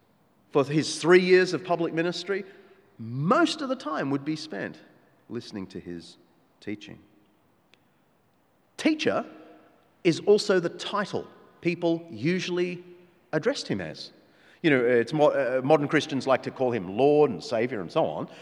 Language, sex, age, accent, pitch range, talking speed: English, male, 30-49, Australian, 135-200 Hz, 145 wpm